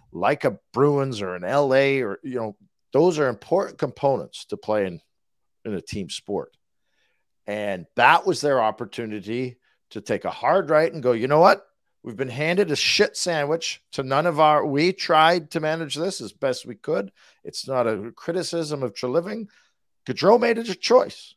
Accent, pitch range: American, 125-170 Hz